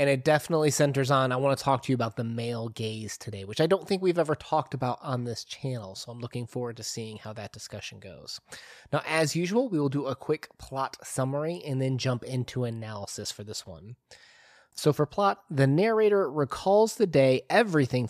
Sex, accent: male, American